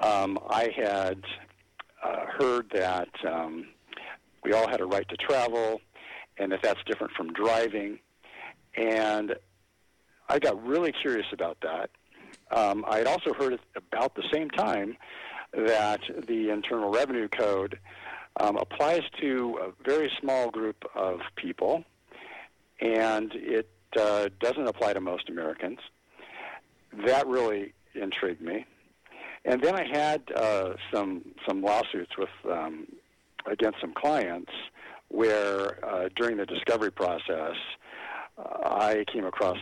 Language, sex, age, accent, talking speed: English, male, 50-69, American, 130 wpm